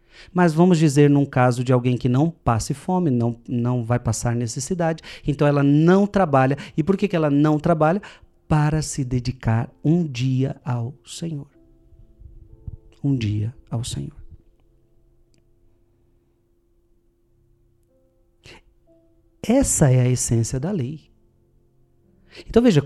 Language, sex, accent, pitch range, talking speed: Portuguese, male, Brazilian, 115-155 Hz, 120 wpm